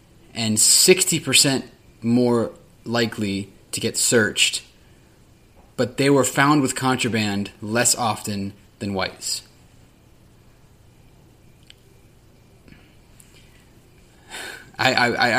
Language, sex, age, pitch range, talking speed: English, male, 20-39, 110-130 Hz, 75 wpm